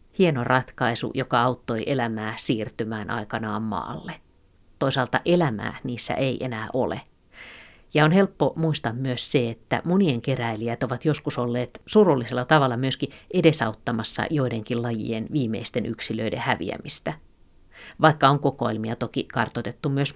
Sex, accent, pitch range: female, native, 115-140 Hz